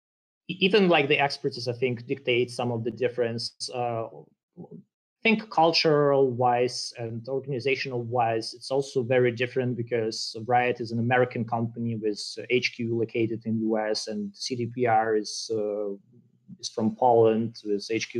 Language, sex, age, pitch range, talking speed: English, male, 30-49, 110-135 Hz, 140 wpm